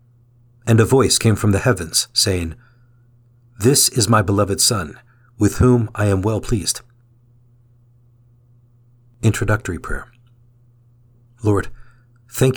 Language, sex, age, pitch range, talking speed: English, male, 50-69, 110-120 Hz, 110 wpm